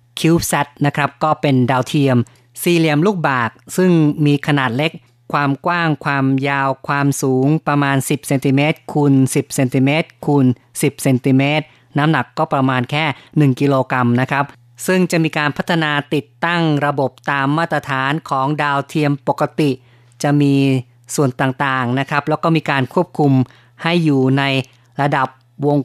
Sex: female